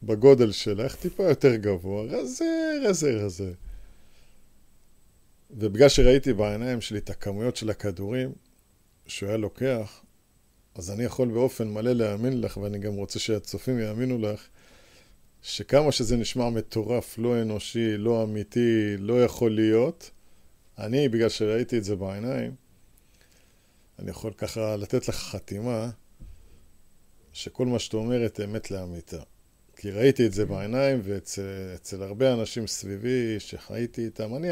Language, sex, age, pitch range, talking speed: Hebrew, male, 50-69, 100-125 Hz, 125 wpm